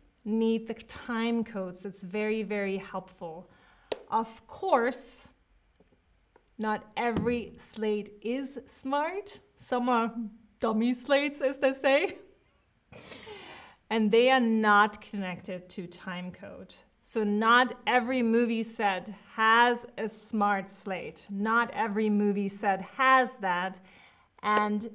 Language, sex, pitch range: English, female, 200-260 Hz